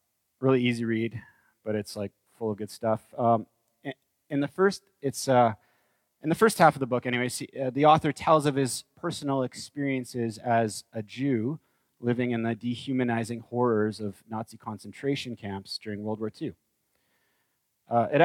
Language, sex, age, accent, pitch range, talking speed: English, male, 30-49, American, 115-155 Hz, 165 wpm